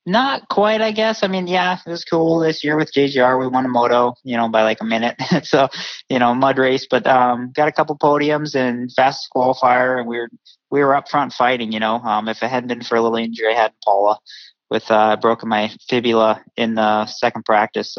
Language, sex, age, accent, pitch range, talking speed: English, male, 20-39, American, 110-130 Hz, 230 wpm